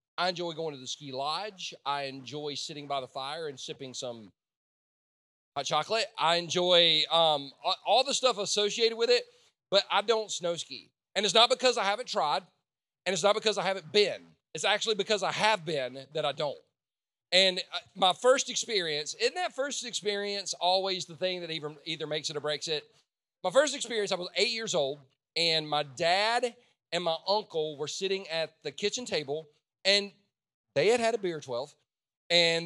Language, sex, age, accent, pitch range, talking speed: English, male, 40-59, American, 155-210 Hz, 185 wpm